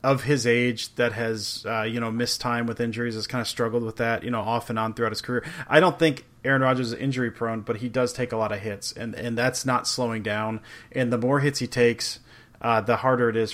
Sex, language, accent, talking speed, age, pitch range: male, English, American, 260 wpm, 30-49, 110-130 Hz